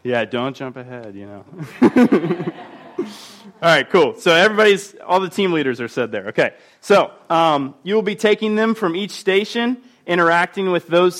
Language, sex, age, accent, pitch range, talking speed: English, male, 20-39, American, 125-175 Hz, 165 wpm